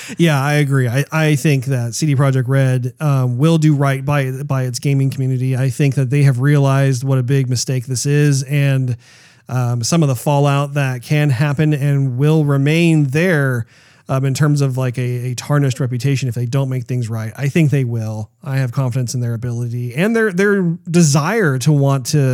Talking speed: 205 wpm